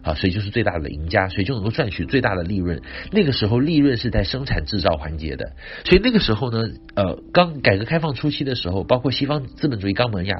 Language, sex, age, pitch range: Chinese, male, 50-69, 95-135 Hz